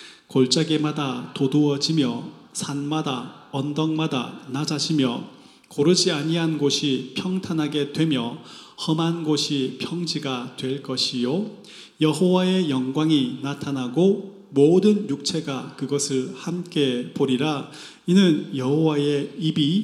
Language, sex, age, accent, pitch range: Korean, male, 30-49, native, 140-180 Hz